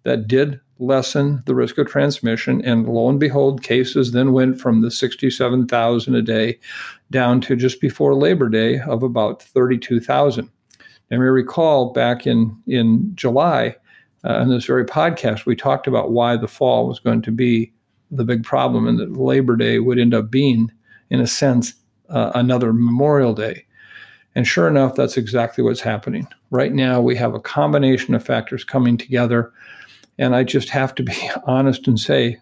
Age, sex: 50-69, male